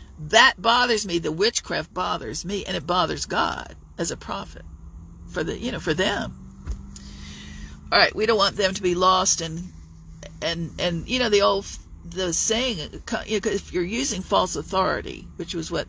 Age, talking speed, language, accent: 50-69, 180 wpm, English, American